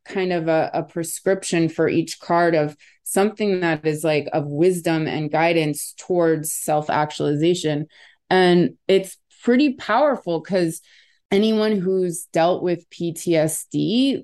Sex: female